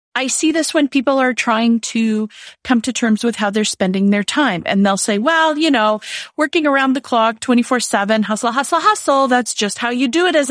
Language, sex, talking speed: English, female, 215 wpm